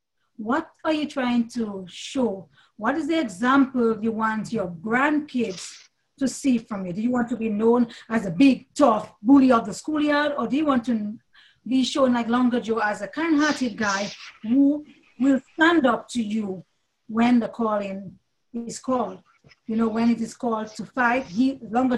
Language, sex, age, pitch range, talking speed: English, female, 40-59, 215-265 Hz, 175 wpm